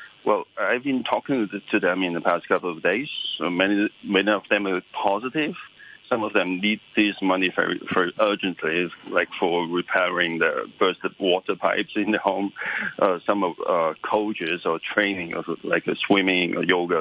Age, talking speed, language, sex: 40-59, 185 wpm, English, male